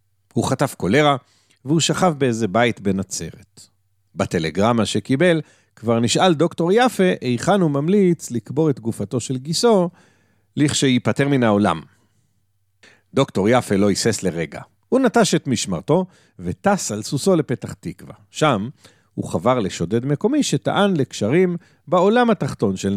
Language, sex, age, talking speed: Hebrew, male, 50-69, 130 wpm